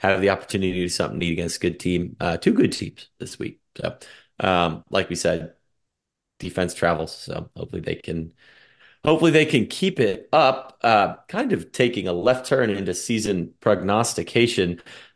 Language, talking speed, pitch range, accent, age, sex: English, 175 wpm, 85-115 Hz, American, 30-49, male